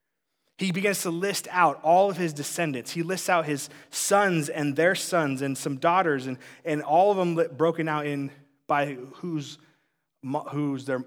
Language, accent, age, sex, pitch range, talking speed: English, American, 20-39, male, 130-165 Hz, 175 wpm